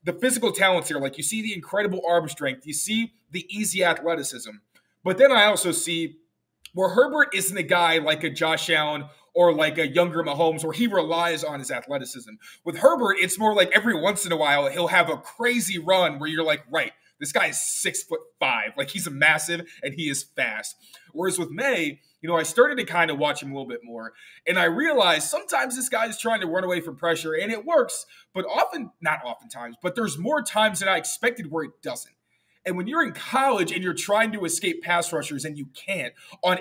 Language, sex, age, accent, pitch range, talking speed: English, male, 20-39, American, 160-220 Hz, 225 wpm